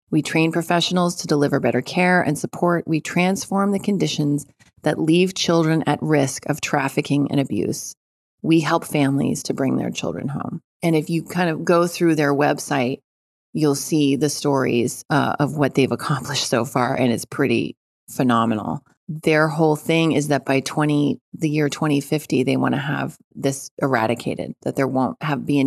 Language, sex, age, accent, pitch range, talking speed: English, female, 30-49, American, 140-170 Hz, 180 wpm